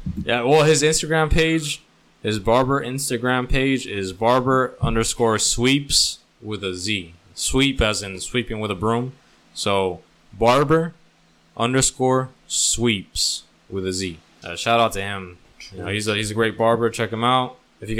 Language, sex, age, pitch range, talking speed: English, male, 20-39, 100-125 Hz, 150 wpm